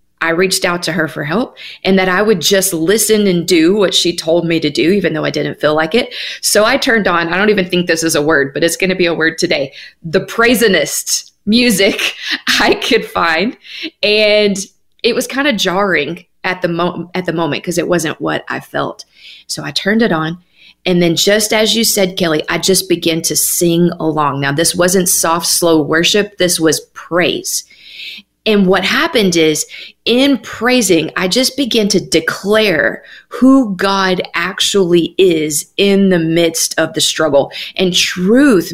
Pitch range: 170-210 Hz